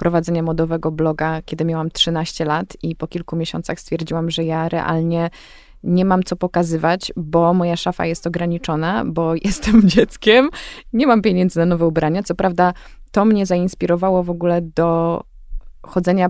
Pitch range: 165-205 Hz